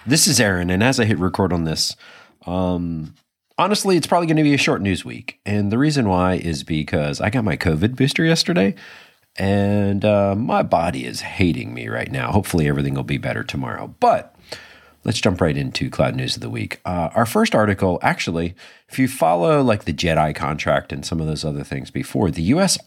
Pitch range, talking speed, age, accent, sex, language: 80-115 Hz, 205 wpm, 40-59, American, male, English